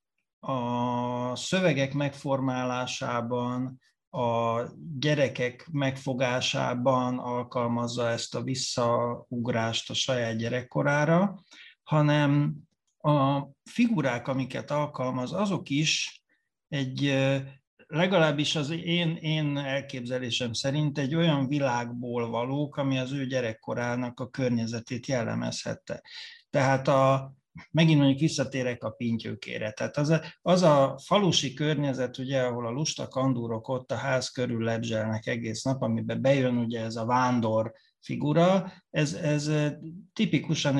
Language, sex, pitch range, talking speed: Hungarian, male, 120-145 Hz, 110 wpm